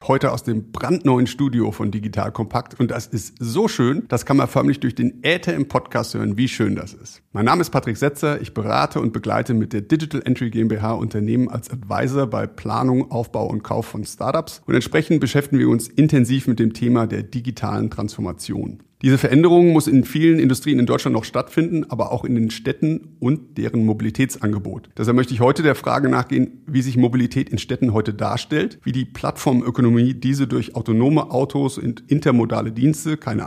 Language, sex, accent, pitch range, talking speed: German, male, German, 115-135 Hz, 190 wpm